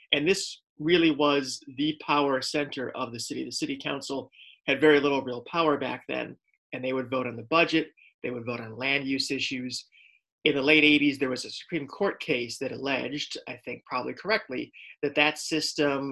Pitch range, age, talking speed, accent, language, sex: 125-145 Hz, 30-49, 195 wpm, American, English, male